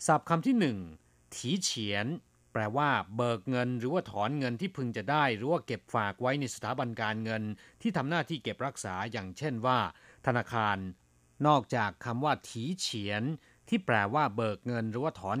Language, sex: Thai, male